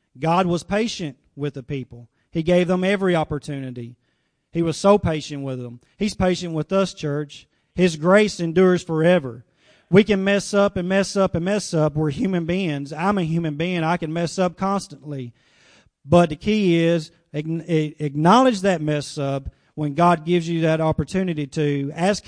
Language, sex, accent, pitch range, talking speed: English, male, American, 145-180 Hz, 170 wpm